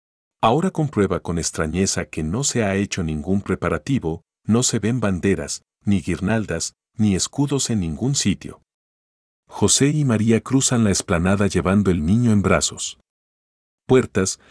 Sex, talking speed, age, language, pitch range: male, 140 wpm, 50-69, Spanish, 85-110 Hz